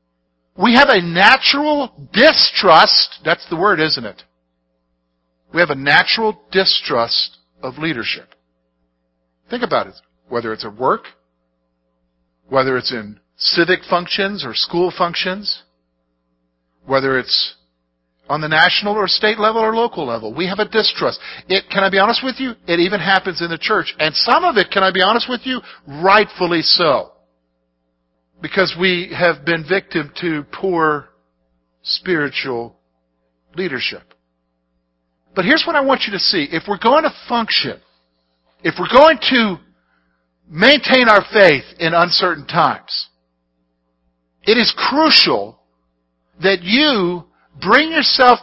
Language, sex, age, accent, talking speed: English, male, 50-69, American, 140 wpm